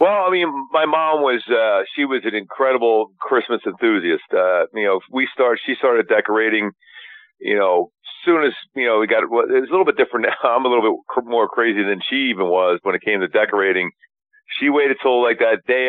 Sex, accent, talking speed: male, American, 215 wpm